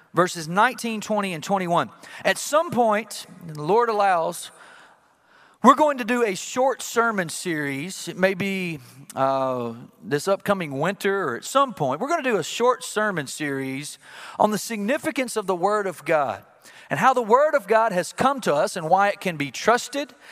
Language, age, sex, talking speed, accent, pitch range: English, 40-59, male, 185 wpm, American, 180-245 Hz